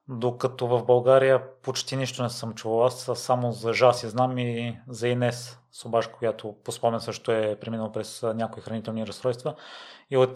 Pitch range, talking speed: 115-125 Hz, 170 wpm